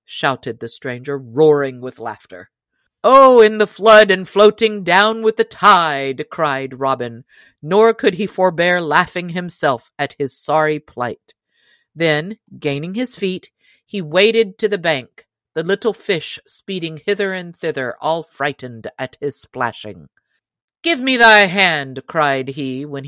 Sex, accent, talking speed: female, American, 145 wpm